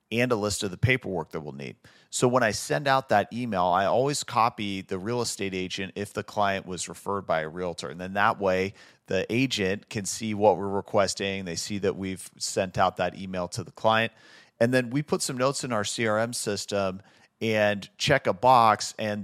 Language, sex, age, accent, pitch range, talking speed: English, male, 40-59, American, 95-115 Hz, 210 wpm